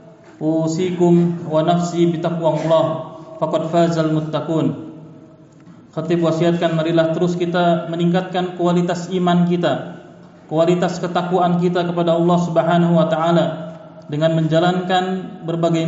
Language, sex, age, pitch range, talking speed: Indonesian, male, 30-49, 160-185 Hz, 105 wpm